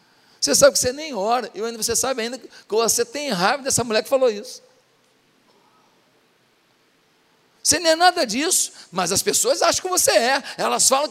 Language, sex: Portuguese, male